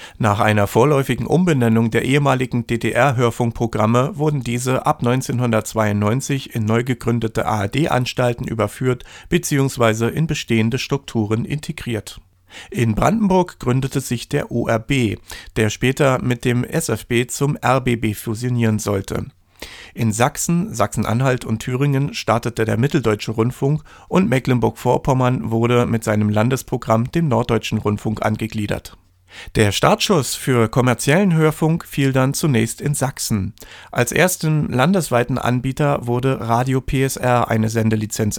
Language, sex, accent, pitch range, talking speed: German, male, German, 110-135 Hz, 115 wpm